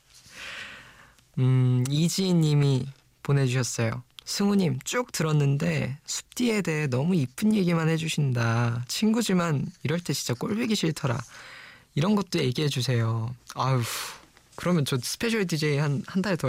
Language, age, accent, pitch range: Korean, 20-39, native, 125-160 Hz